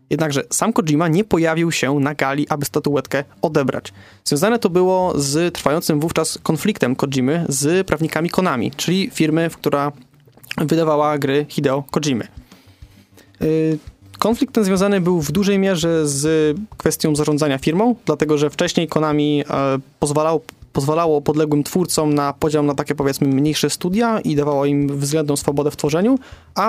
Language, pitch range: Polish, 145-170 Hz